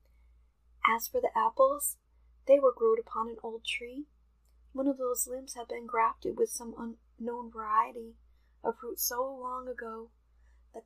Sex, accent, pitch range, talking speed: female, American, 220-250 Hz, 155 wpm